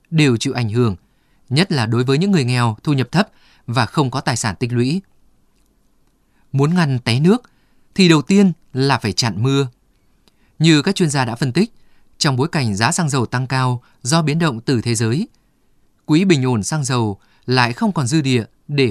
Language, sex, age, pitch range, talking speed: Vietnamese, male, 20-39, 120-160 Hz, 205 wpm